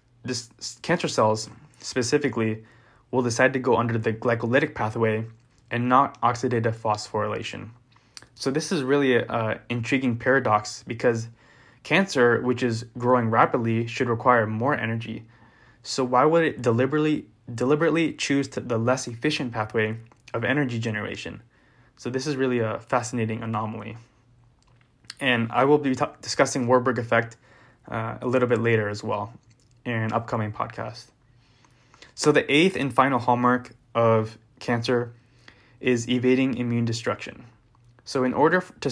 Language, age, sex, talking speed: English, 20-39, male, 140 wpm